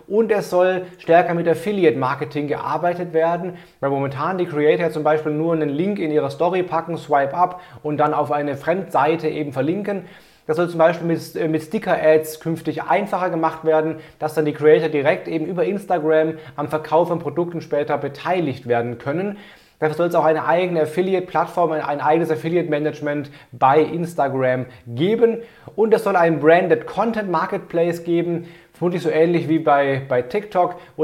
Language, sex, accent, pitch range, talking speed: German, male, German, 150-175 Hz, 165 wpm